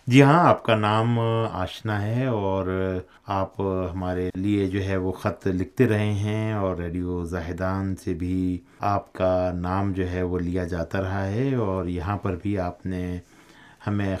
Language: Urdu